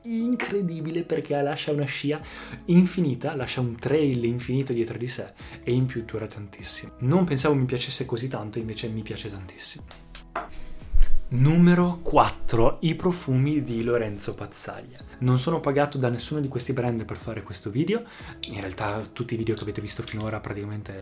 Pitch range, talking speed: 110-145 Hz, 165 wpm